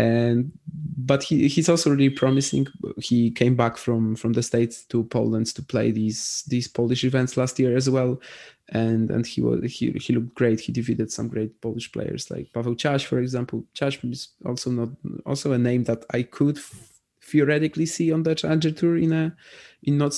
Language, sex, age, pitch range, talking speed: English, male, 20-39, 115-140 Hz, 195 wpm